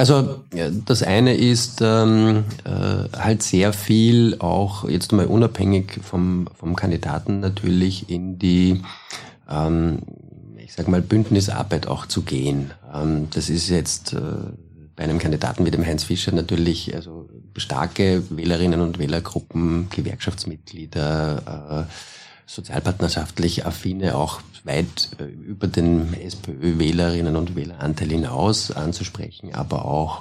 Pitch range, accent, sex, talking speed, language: 80-100 Hz, German, male, 120 wpm, German